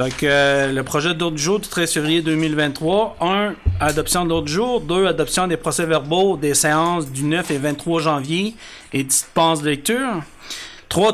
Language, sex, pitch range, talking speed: French, male, 155-200 Hz, 170 wpm